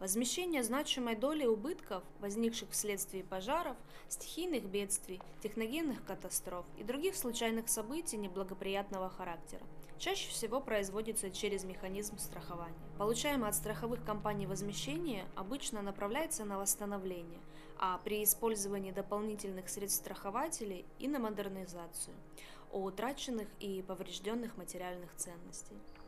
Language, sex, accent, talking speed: Russian, female, native, 110 wpm